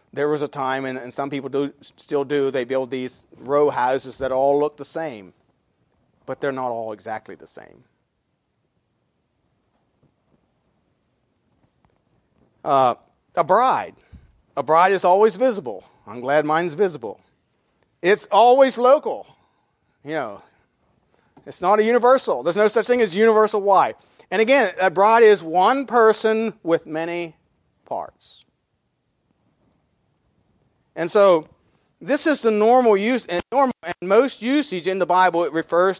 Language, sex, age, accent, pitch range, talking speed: English, male, 40-59, American, 135-200 Hz, 140 wpm